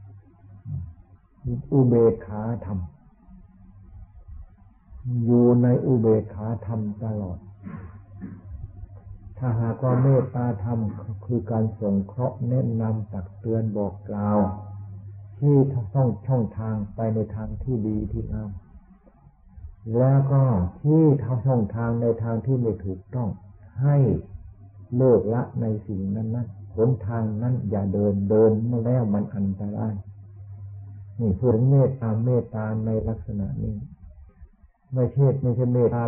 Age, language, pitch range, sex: 60-79, Thai, 100-120 Hz, male